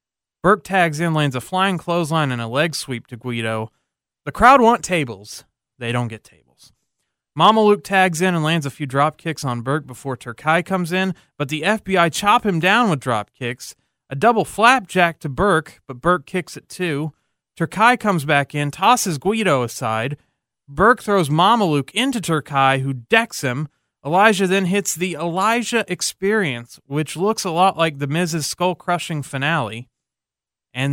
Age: 30-49